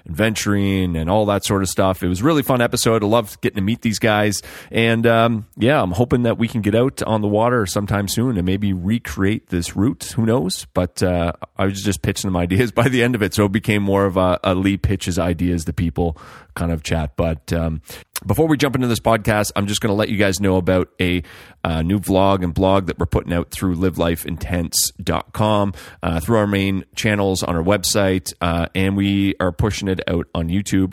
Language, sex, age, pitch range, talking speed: English, male, 30-49, 90-110 Hz, 225 wpm